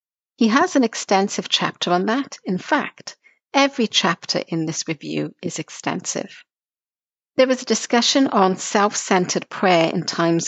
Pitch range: 170-225 Hz